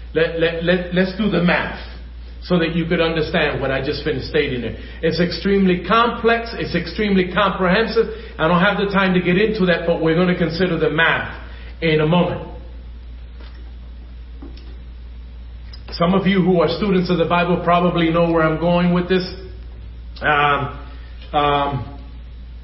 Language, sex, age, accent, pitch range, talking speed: English, male, 40-59, American, 120-180 Hz, 165 wpm